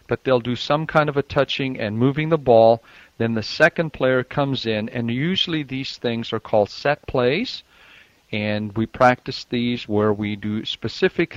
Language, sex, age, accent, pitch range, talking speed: English, male, 50-69, American, 115-140 Hz, 180 wpm